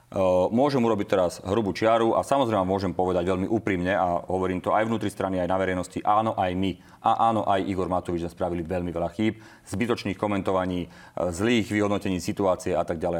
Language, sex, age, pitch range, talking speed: Slovak, male, 30-49, 90-100 Hz, 185 wpm